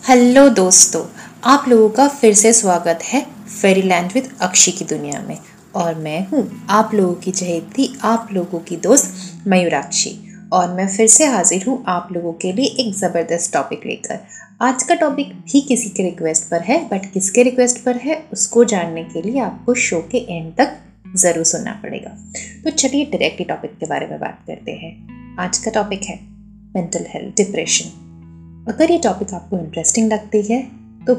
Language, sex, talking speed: Hindi, female, 175 wpm